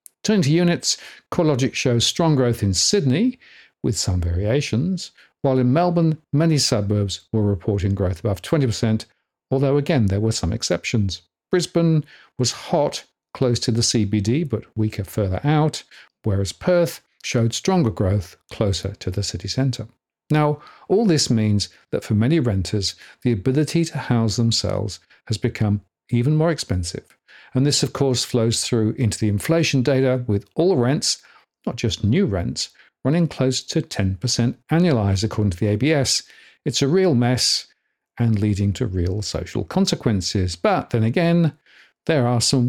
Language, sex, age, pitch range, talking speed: English, male, 50-69, 105-145 Hz, 155 wpm